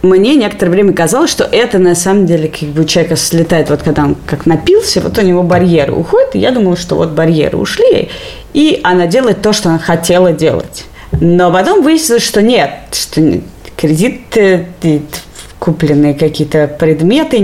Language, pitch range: Russian, 160-205 Hz